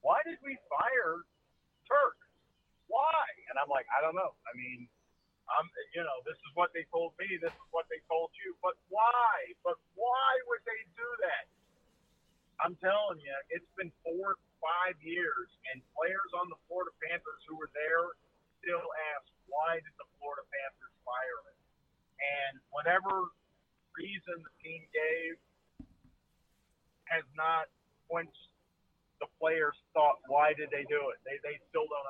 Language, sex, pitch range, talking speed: English, male, 145-185 Hz, 155 wpm